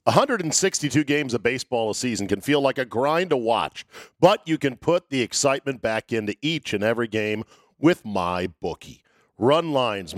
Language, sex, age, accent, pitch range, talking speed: English, male, 50-69, American, 110-155 Hz, 195 wpm